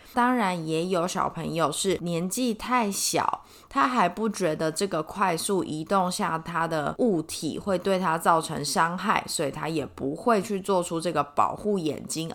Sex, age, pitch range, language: female, 20-39, 165-210 Hz, Chinese